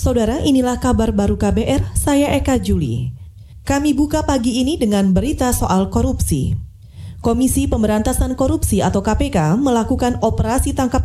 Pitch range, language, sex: 190-255 Hz, Indonesian, female